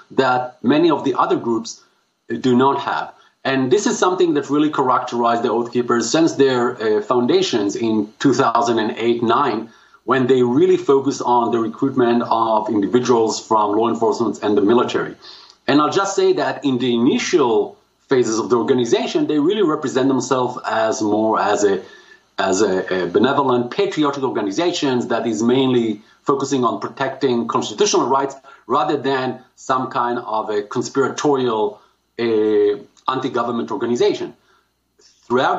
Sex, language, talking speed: male, English, 140 wpm